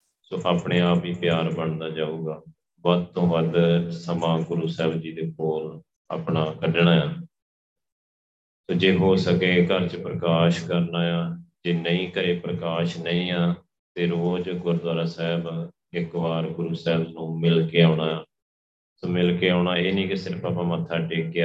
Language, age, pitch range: Punjabi, 30-49, 80-90 Hz